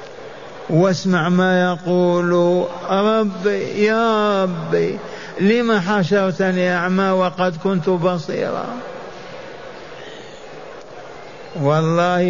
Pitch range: 170-195 Hz